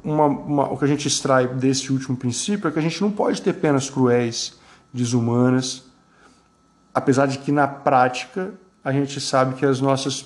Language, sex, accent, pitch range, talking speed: Portuguese, male, Brazilian, 125-145 Hz, 180 wpm